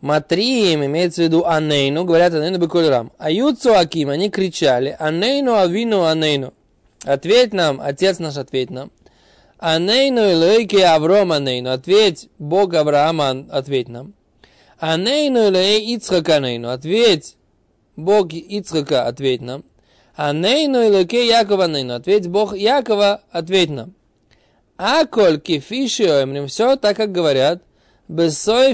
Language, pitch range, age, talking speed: Russian, 145-210 Hz, 20-39, 115 wpm